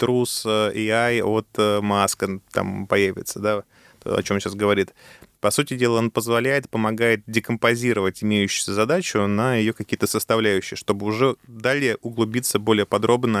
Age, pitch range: 20-39, 105-120 Hz